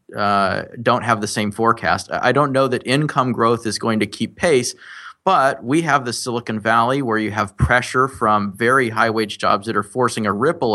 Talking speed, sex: 205 wpm, male